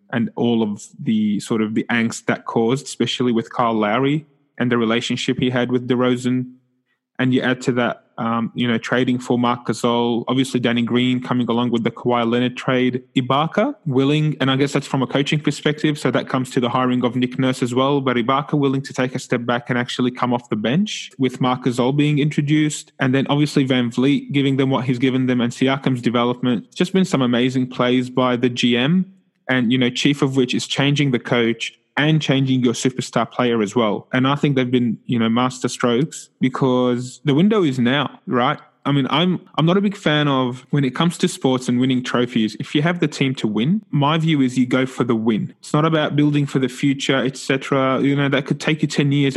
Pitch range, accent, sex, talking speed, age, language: 125-145 Hz, Australian, male, 225 wpm, 20-39, English